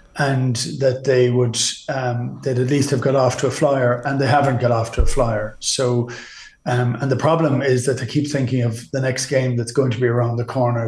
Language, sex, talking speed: English, male, 235 wpm